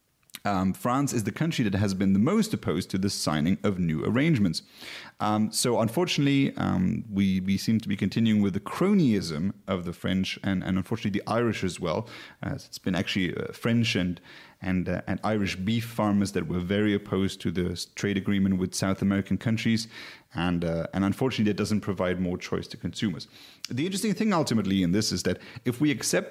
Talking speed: 195 wpm